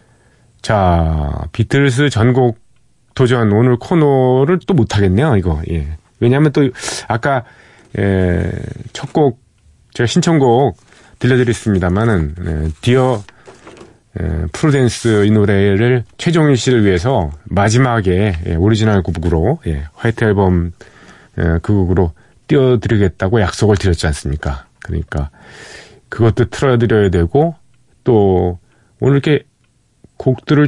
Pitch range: 90-125 Hz